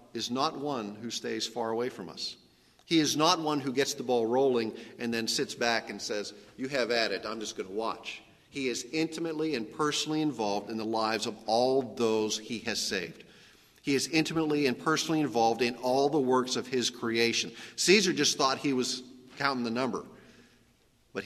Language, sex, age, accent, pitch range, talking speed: English, male, 50-69, American, 110-150 Hz, 200 wpm